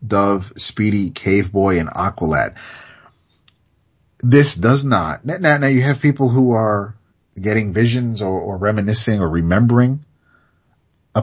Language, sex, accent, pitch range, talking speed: English, male, American, 95-130 Hz, 120 wpm